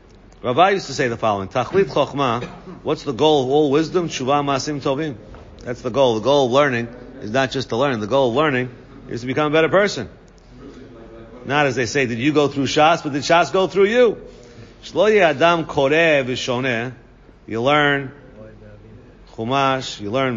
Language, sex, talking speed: English, male, 185 wpm